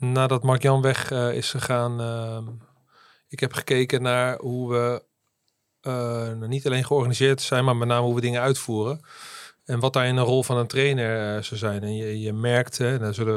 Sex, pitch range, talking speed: male, 115-135 Hz, 200 wpm